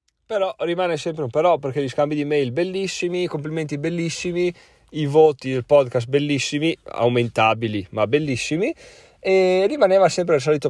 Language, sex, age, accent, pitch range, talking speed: Italian, male, 20-39, native, 120-150 Hz, 150 wpm